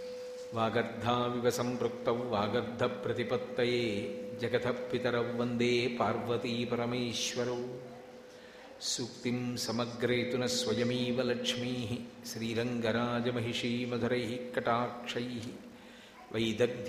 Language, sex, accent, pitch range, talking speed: English, male, Indian, 115-125 Hz, 70 wpm